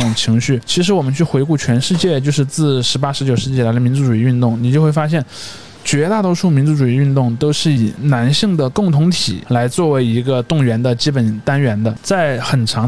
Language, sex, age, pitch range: Chinese, male, 20-39, 125-165 Hz